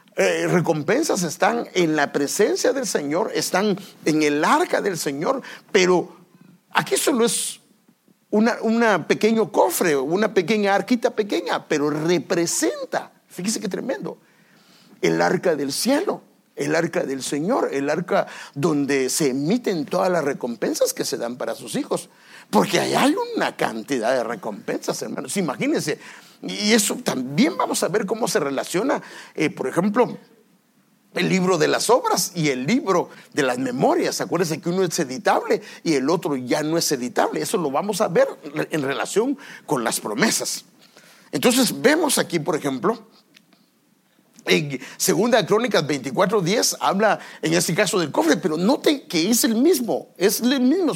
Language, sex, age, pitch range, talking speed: English, male, 50-69, 165-235 Hz, 155 wpm